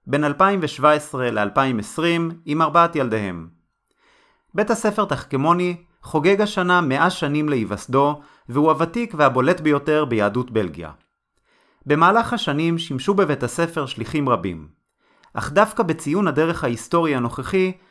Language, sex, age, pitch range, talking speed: Hebrew, male, 30-49, 130-180 Hz, 110 wpm